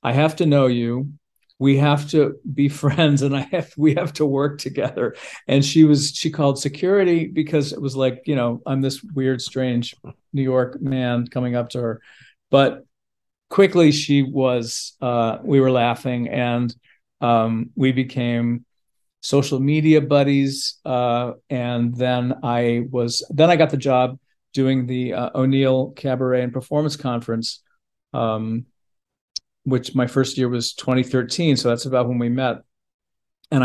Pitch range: 120-140 Hz